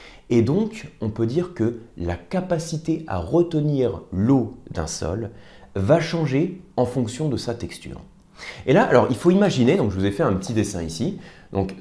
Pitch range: 100-155 Hz